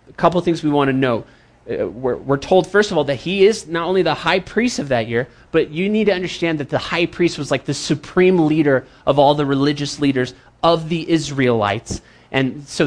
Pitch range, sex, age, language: 135-185 Hz, male, 30-49, English